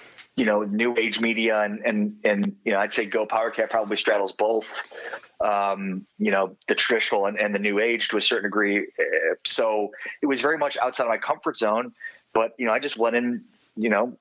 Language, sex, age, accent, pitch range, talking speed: English, male, 30-49, American, 100-120 Hz, 210 wpm